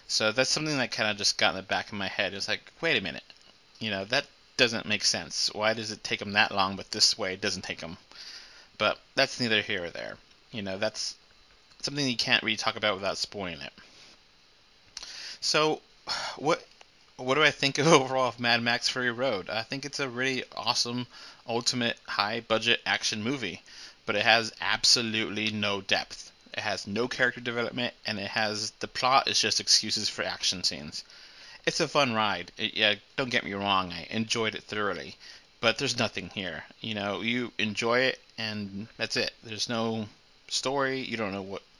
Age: 30-49